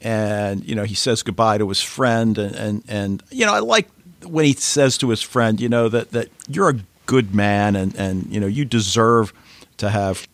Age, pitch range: 50-69, 105-135 Hz